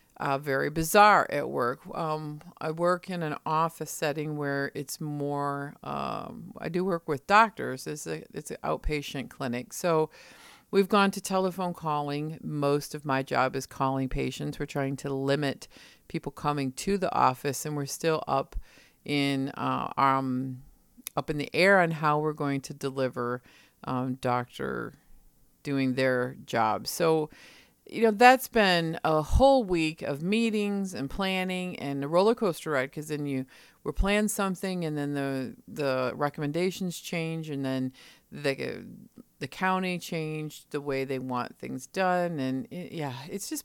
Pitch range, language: 135-180 Hz, English